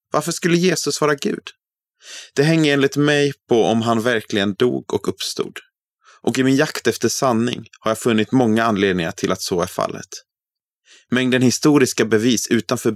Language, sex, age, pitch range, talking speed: Swedish, male, 30-49, 100-140 Hz, 165 wpm